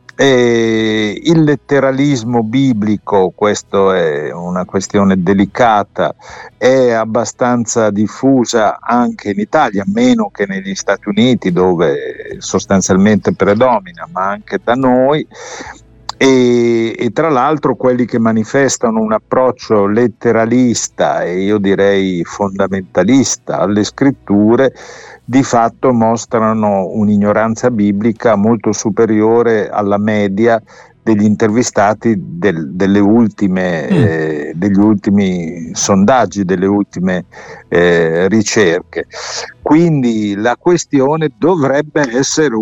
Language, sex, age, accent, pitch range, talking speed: Italian, male, 50-69, native, 100-130 Hz, 100 wpm